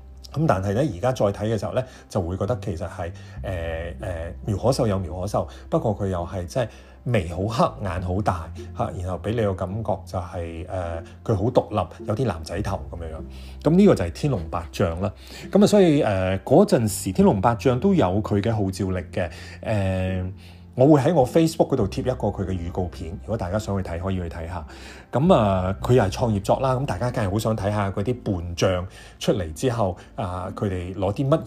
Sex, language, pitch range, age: male, Chinese, 90-125 Hz, 30-49